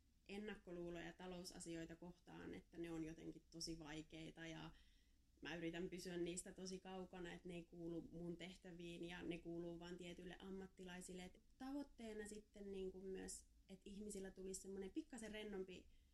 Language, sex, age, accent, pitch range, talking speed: Finnish, female, 20-39, native, 170-195 Hz, 140 wpm